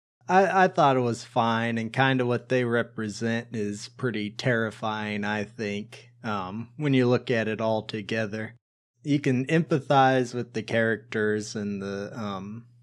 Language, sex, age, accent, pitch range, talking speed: English, male, 20-39, American, 110-130 Hz, 160 wpm